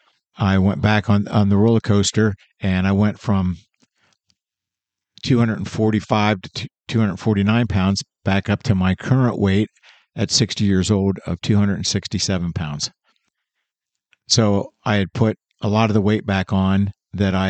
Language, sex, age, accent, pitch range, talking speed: English, male, 50-69, American, 95-110 Hz, 145 wpm